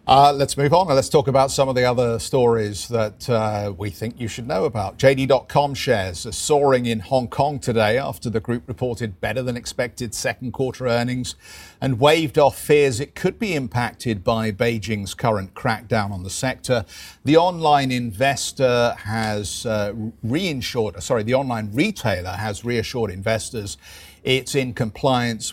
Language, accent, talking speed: English, British, 165 wpm